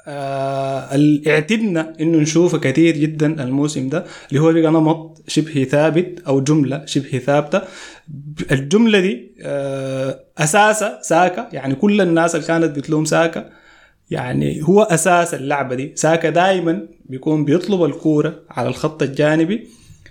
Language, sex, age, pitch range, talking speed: Arabic, male, 20-39, 150-190 Hz, 130 wpm